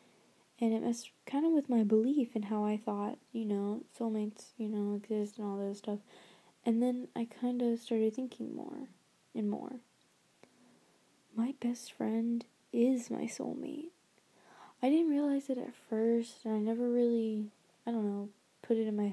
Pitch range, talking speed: 210-235 Hz, 175 wpm